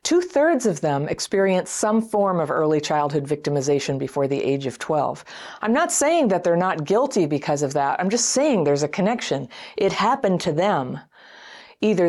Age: 50-69